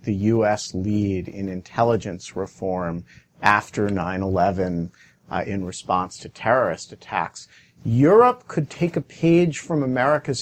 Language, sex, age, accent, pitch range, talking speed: English, male, 50-69, American, 115-150 Hz, 115 wpm